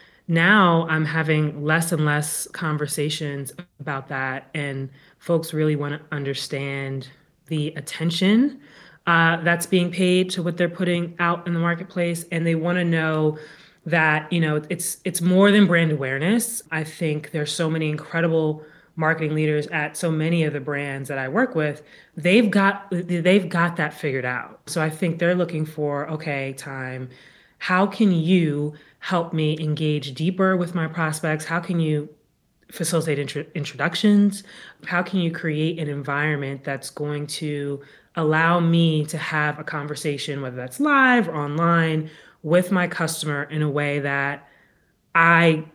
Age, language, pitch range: 30-49, English, 150-170 Hz